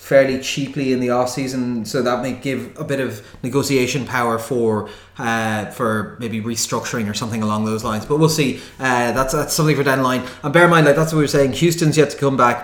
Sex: male